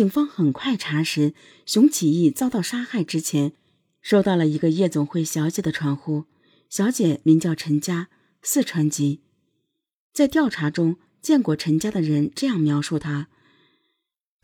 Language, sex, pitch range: Chinese, female, 150-210 Hz